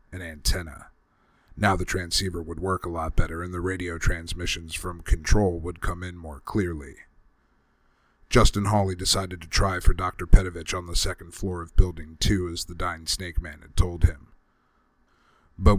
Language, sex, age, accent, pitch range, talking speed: English, male, 40-59, American, 85-95 Hz, 170 wpm